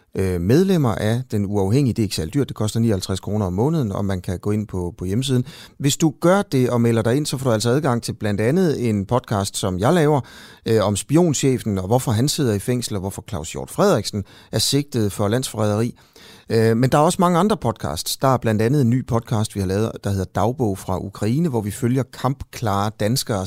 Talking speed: 215 wpm